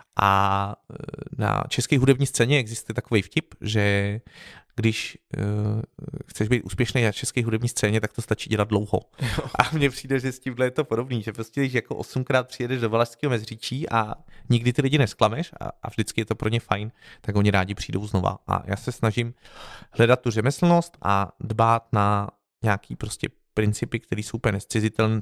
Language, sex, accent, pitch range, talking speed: Czech, male, native, 100-120 Hz, 180 wpm